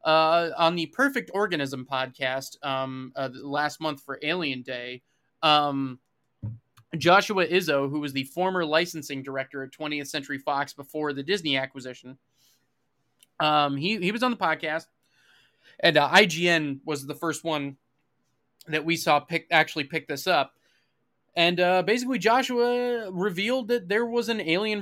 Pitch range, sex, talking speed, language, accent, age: 140-180 Hz, male, 150 wpm, English, American, 20-39